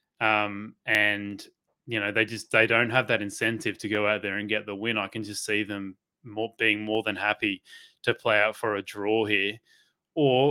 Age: 20-39